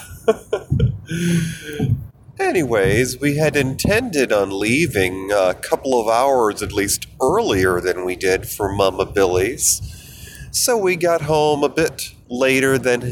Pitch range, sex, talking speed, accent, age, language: 105-130 Hz, male, 125 wpm, American, 40-59, English